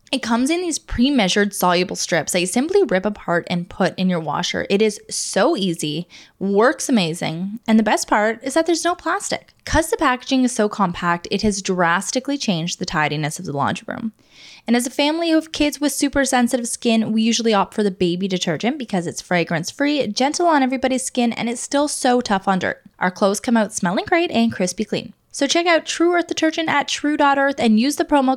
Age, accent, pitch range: 10-29, American, 185-265 Hz